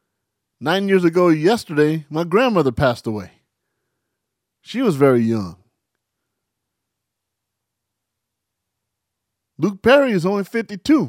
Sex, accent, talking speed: male, American, 90 wpm